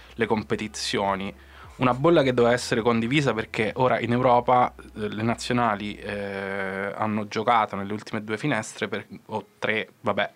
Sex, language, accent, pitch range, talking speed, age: male, Italian, native, 105-130 Hz, 140 wpm, 20-39